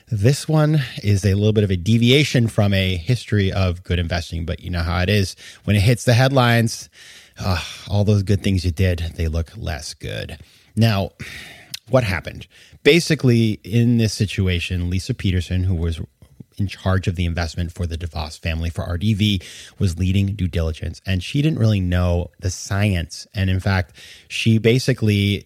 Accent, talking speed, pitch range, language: American, 175 wpm, 90-115 Hz, English